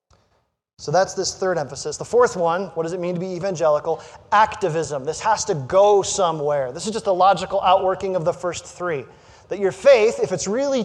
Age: 30-49